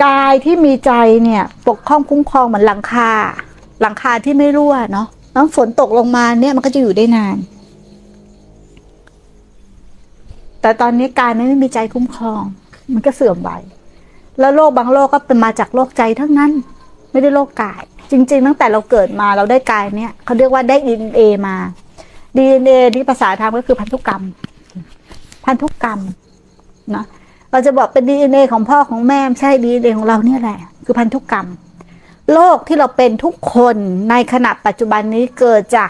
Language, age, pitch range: Thai, 60-79, 220-275 Hz